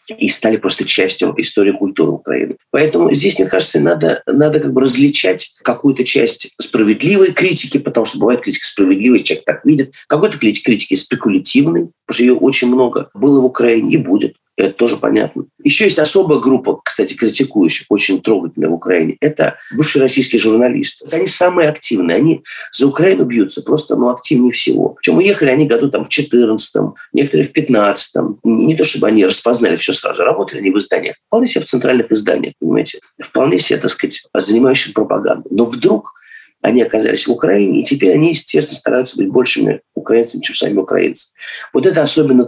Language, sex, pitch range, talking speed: Russian, male, 125-170 Hz, 175 wpm